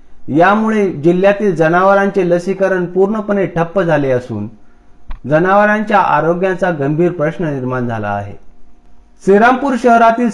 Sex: male